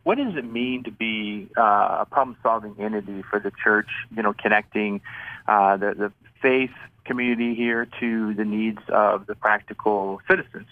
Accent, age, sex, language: American, 40-59, male, English